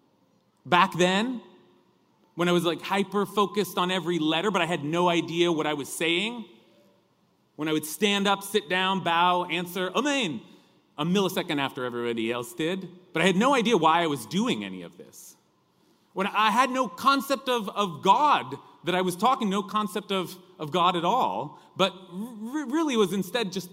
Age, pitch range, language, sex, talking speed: 30-49, 155-210 Hz, English, male, 180 wpm